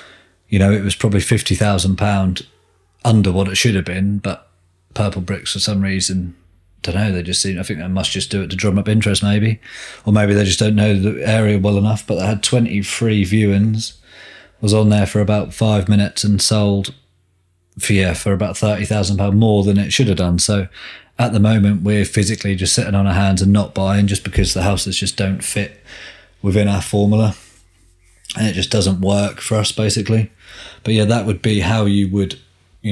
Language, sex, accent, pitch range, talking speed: English, male, British, 95-105 Hz, 200 wpm